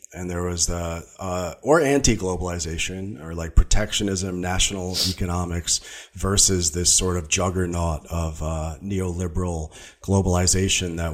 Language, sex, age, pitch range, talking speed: English, male, 40-59, 90-110 Hz, 120 wpm